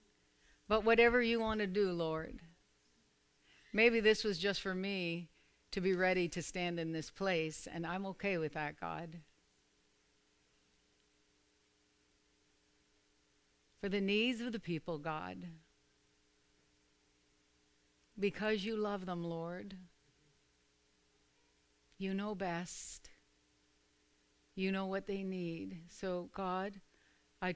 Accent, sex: American, female